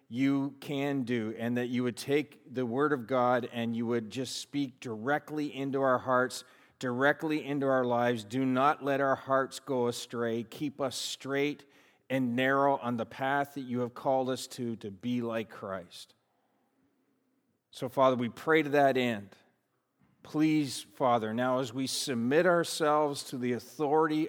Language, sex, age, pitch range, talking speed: English, male, 40-59, 120-150 Hz, 165 wpm